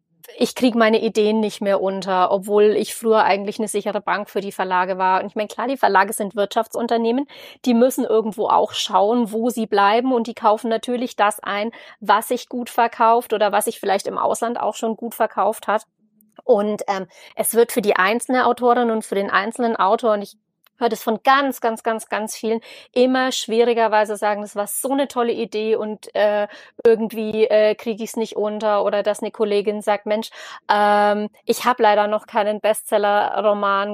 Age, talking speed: 30-49, 190 wpm